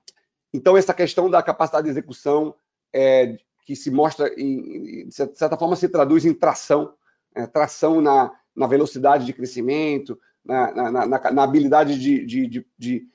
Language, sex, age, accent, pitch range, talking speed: Portuguese, male, 40-59, Brazilian, 135-180 Hz, 125 wpm